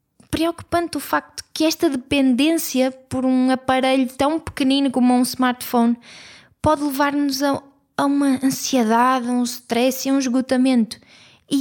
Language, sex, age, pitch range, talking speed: Portuguese, female, 20-39, 245-280 Hz, 135 wpm